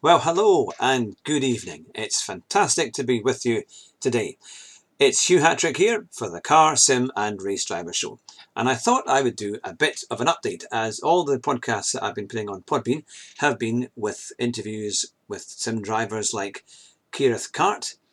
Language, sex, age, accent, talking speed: English, male, 50-69, British, 180 wpm